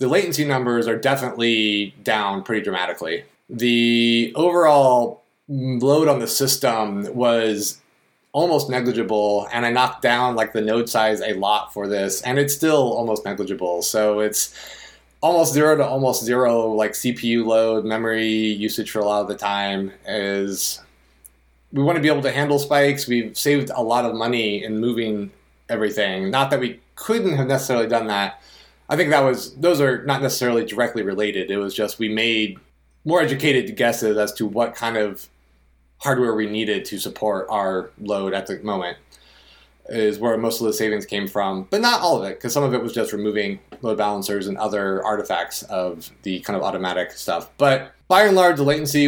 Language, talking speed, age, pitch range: English, 180 wpm, 30-49, 105-125 Hz